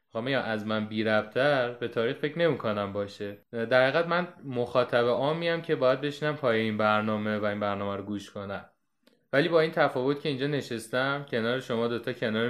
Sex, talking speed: male, 180 wpm